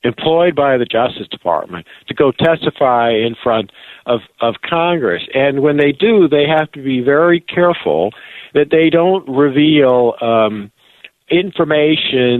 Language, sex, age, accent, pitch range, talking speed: English, male, 50-69, American, 115-150 Hz, 140 wpm